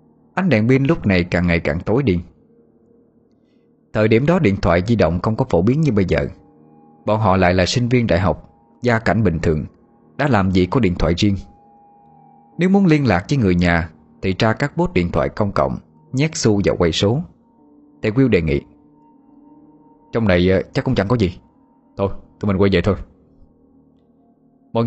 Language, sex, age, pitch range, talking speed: Vietnamese, male, 20-39, 90-145 Hz, 195 wpm